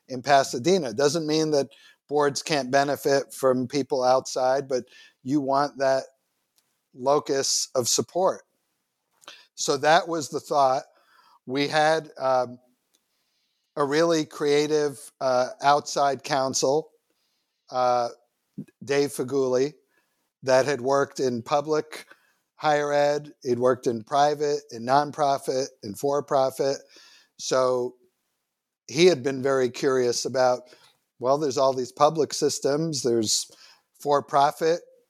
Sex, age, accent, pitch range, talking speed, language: male, 50-69, American, 130-150 Hz, 115 wpm, English